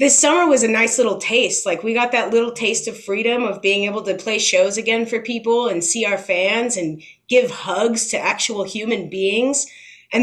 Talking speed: 210 wpm